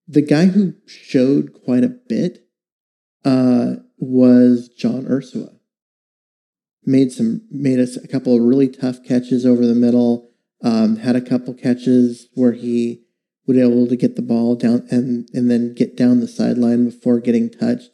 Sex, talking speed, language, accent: male, 165 wpm, English, American